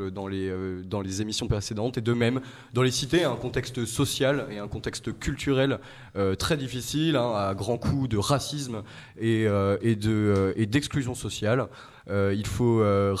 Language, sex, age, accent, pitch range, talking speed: French, male, 20-39, French, 110-135 Hz, 190 wpm